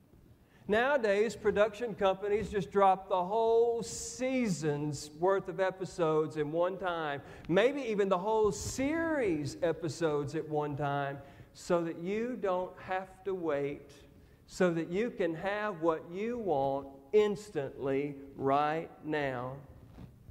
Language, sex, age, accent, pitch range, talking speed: English, male, 50-69, American, 150-200 Hz, 120 wpm